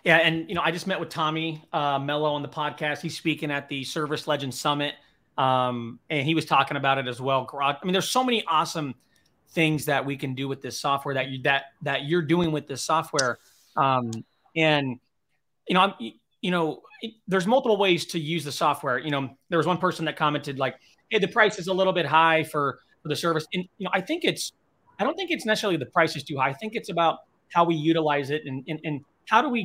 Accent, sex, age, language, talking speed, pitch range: American, male, 30-49, English, 240 wpm, 140-165 Hz